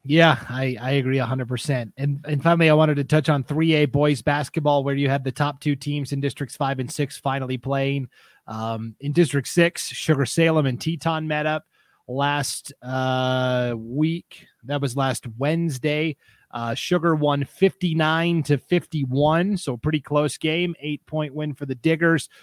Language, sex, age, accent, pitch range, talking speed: English, male, 30-49, American, 130-155 Hz, 165 wpm